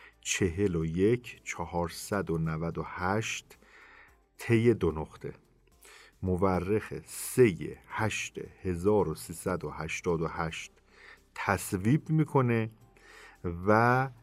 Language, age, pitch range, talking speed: Persian, 50-69, 85-120 Hz, 90 wpm